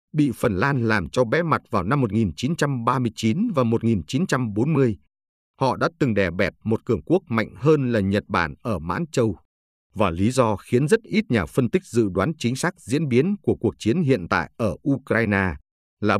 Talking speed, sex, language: 190 wpm, male, Vietnamese